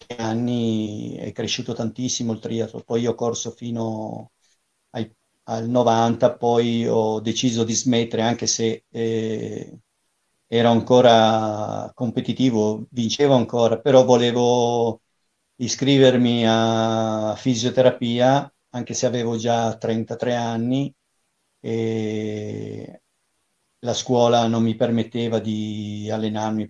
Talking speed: 100 wpm